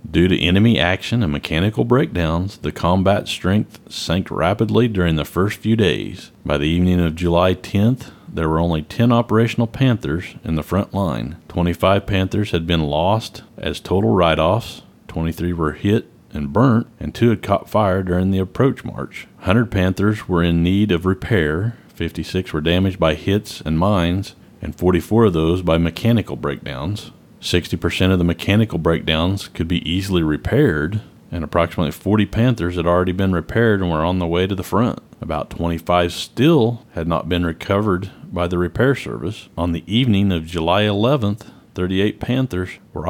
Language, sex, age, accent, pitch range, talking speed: English, male, 40-59, American, 85-105 Hz, 170 wpm